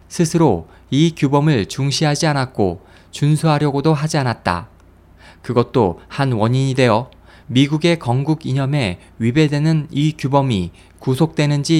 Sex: male